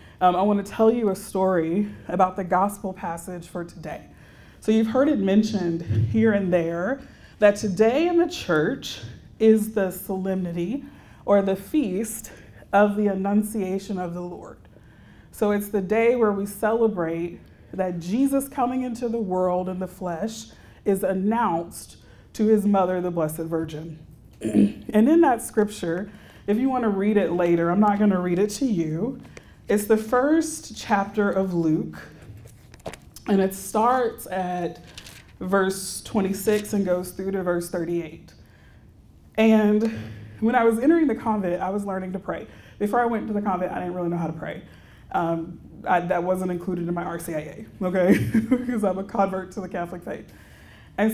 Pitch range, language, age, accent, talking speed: 180-220 Hz, English, 30-49, American, 165 wpm